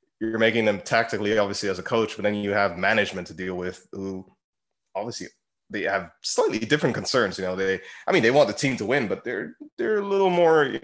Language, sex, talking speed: English, male, 225 wpm